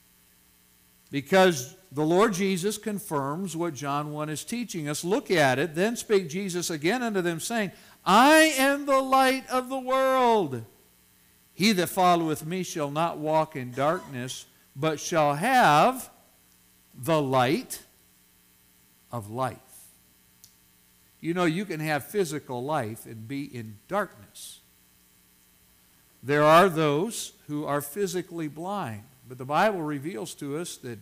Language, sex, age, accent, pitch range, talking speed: English, male, 60-79, American, 115-190 Hz, 135 wpm